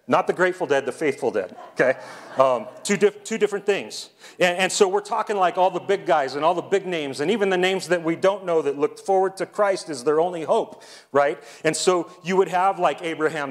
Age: 40-59